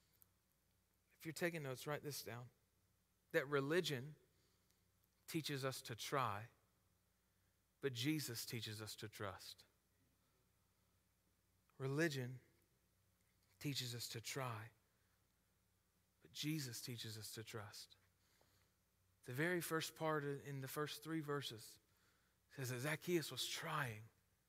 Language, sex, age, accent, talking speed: English, male, 40-59, American, 105 wpm